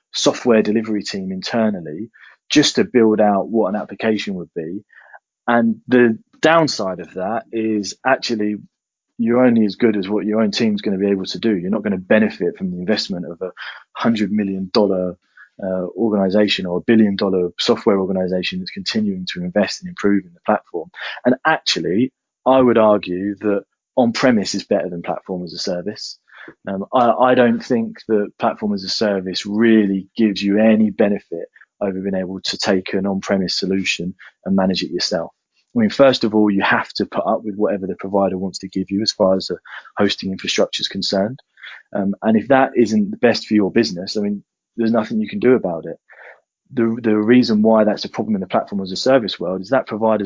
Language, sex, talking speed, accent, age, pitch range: English, male, 200 wpm, British, 20-39, 95-115 Hz